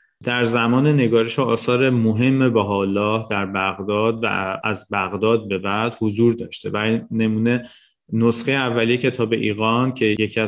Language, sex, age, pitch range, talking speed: Persian, male, 30-49, 105-120 Hz, 130 wpm